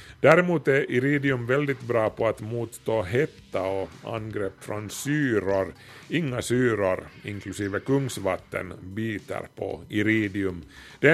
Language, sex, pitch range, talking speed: Swedish, male, 100-120 Hz, 115 wpm